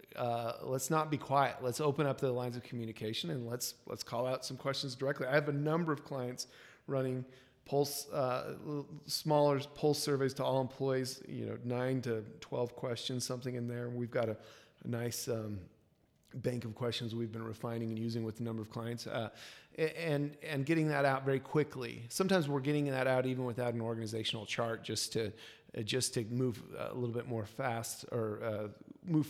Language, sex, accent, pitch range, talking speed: English, male, American, 115-135 Hz, 195 wpm